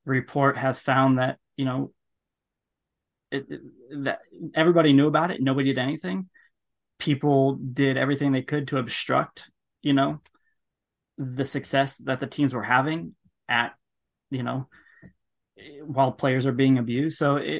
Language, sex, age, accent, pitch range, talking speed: English, male, 20-39, American, 125-145 Hz, 140 wpm